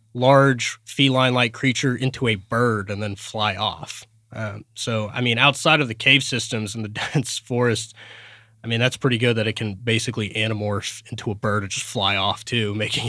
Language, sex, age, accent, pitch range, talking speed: English, male, 20-39, American, 110-135 Hz, 195 wpm